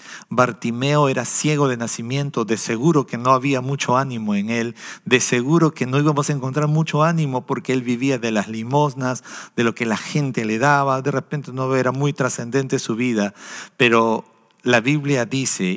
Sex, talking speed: male, 185 wpm